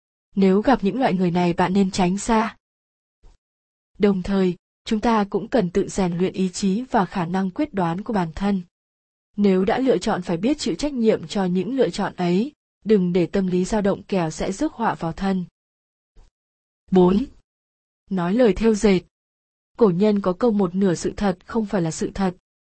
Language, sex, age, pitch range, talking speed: Vietnamese, female, 20-39, 185-225 Hz, 195 wpm